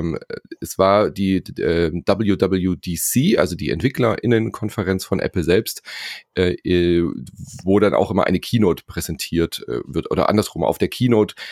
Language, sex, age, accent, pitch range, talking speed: German, male, 30-49, German, 85-110 Hz, 135 wpm